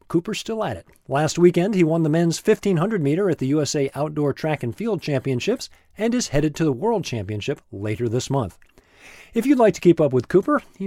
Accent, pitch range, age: American, 125-180 Hz, 40-59